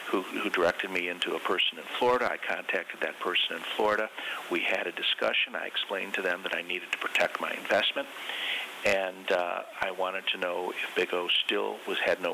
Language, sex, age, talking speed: English, male, 50-69, 205 wpm